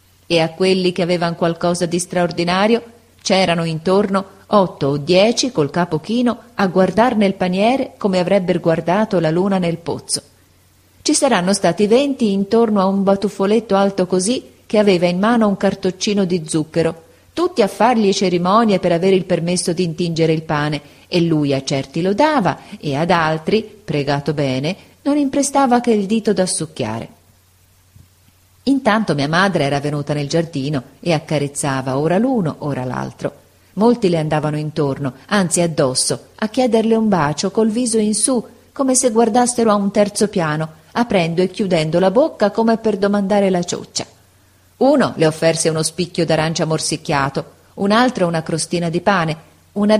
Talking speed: 160 wpm